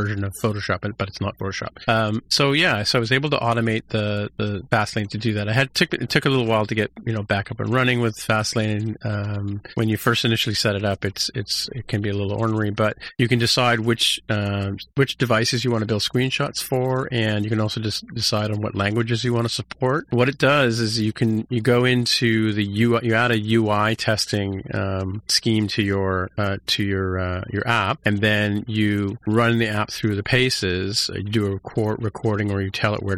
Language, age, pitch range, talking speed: English, 40-59, 105-115 Hz, 235 wpm